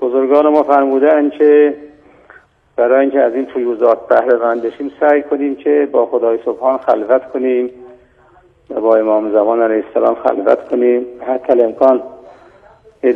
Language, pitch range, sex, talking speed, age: Persian, 115-140 Hz, male, 135 wpm, 50-69